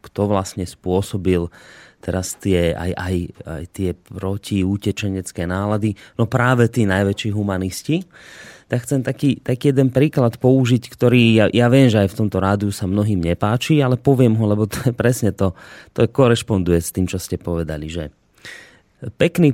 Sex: male